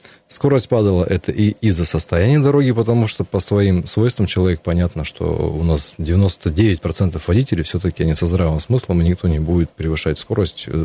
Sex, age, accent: male, 20-39, native